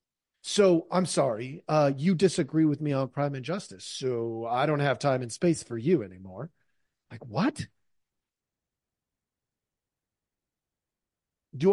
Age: 40-59